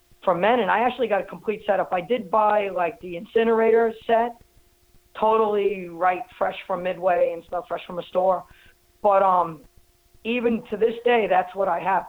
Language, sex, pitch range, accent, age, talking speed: English, female, 180-230 Hz, American, 40-59, 185 wpm